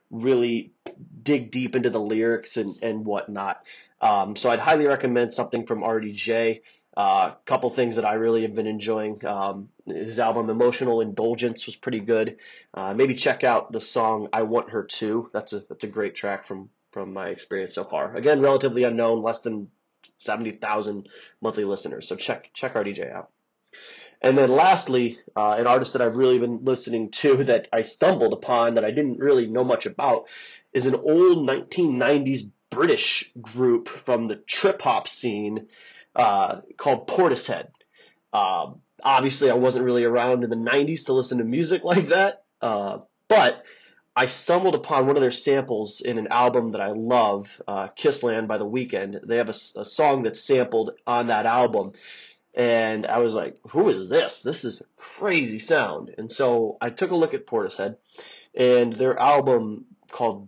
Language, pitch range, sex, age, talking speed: English, 110-135 Hz, male, 20-39, 175 wpm